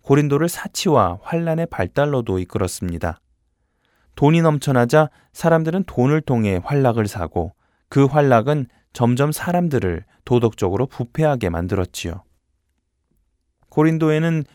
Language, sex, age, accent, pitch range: Korean, male, 20-39, native, 105-150 Hz